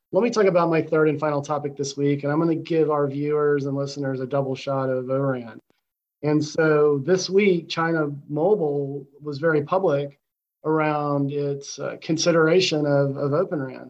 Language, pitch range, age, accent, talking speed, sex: English, 140-155 Hz, 40-59, American, 175 wpm, male